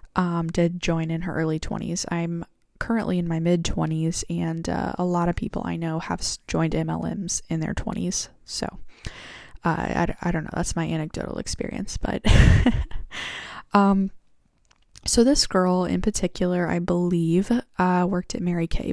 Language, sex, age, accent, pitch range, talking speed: English, female, 10-29, American, 175-200 Hz, 160 wpm